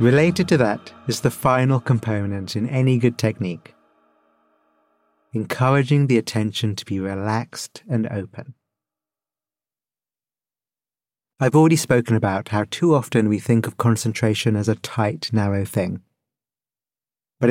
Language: English